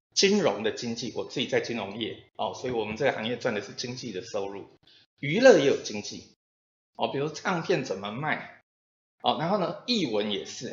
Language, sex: Chinese, male